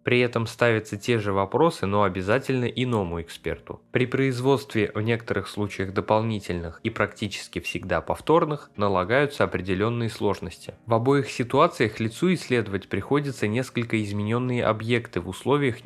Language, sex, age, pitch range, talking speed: Russian, male, 20-39, 100-125 Hz, 130 wpm